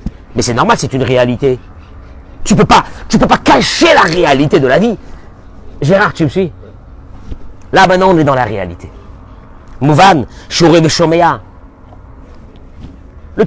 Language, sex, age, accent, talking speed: French, male, 40-59, French, 150 wpm